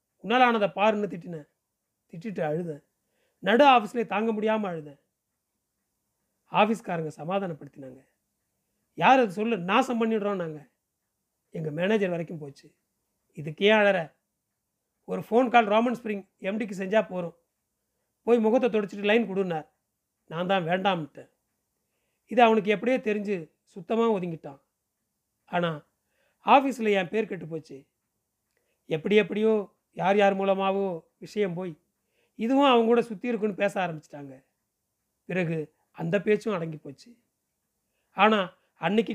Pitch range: 160-220 Hz